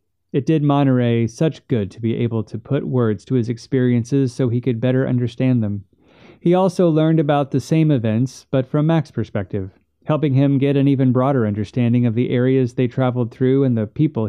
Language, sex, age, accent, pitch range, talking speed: English, male, 30-49, American, 110-135 Hz, 195 wpm